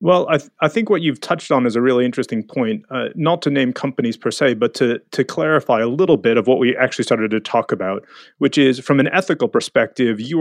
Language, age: English, 30-49